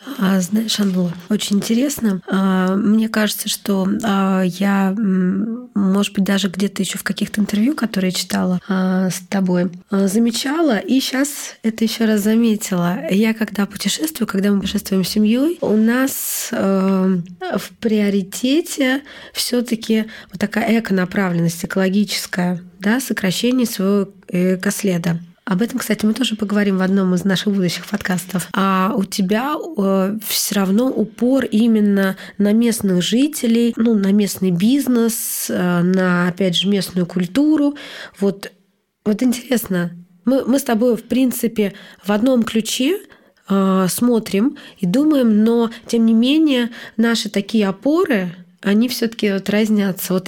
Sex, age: female, 20-39